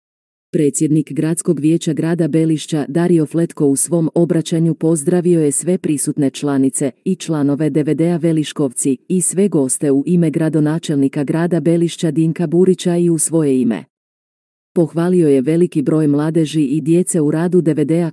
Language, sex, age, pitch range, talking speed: Croatian, female, 40-59, 150-170 Hz, 140 wpm